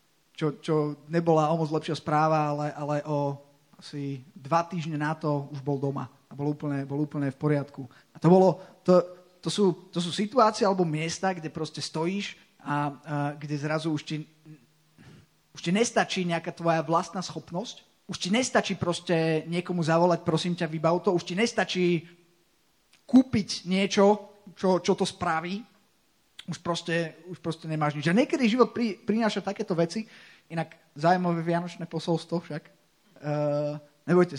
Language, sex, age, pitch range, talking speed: Slovak, male, 30-49, 150-185 Hz, 155 wpm